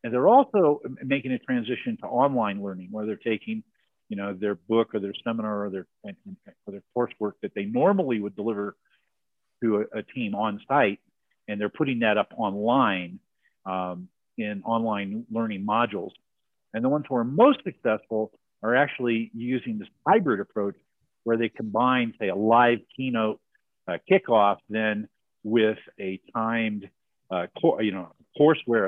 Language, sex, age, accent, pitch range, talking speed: English, male, 50-69, American, 100-125 Hz, 160 wpm